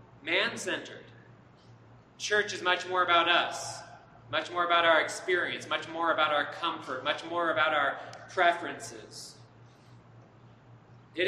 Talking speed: 120 wpm